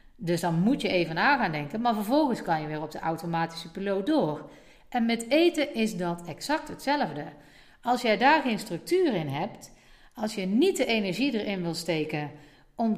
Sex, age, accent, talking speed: female, 50-69, Dutch, 190 wpm